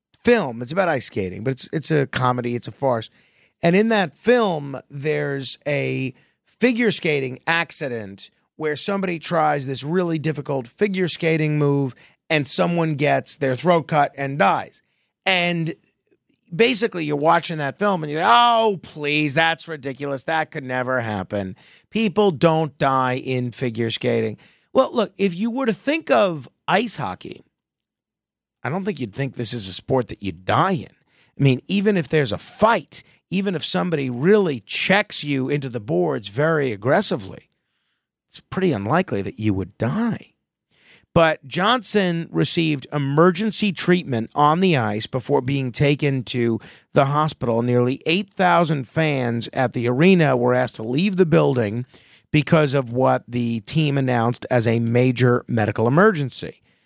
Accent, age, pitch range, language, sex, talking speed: American, 40-59, 125-175 Hz, English, male, 155 wpm